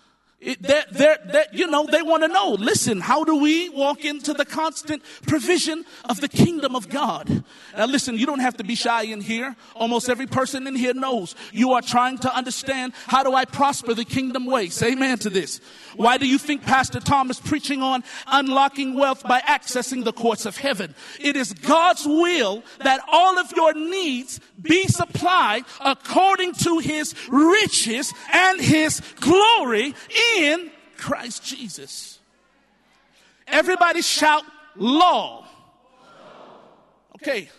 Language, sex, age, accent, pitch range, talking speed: English, male, 40-59, American, 245-310 Hz, 155 wpm